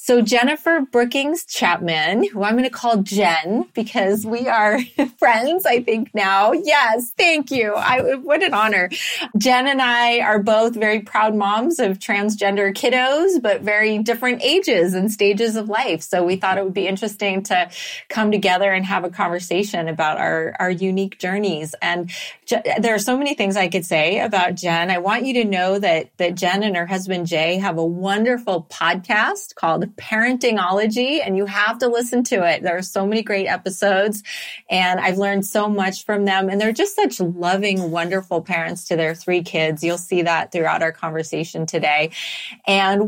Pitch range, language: 180-230 Hz, English